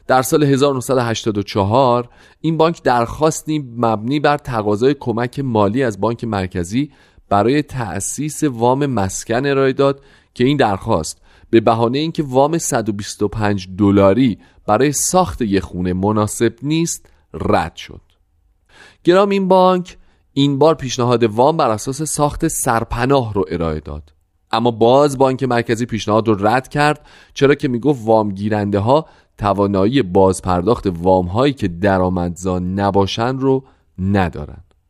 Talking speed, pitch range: 130 wpm, 95-135 Hz